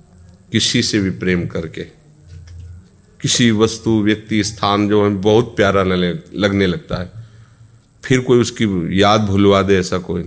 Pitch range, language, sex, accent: 95-115 Hz, Hindi, male, native